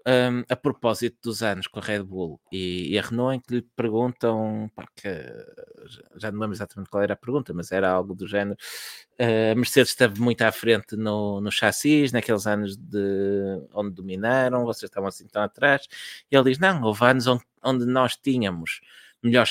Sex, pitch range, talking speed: male, 105-130 Hz, 180 wpm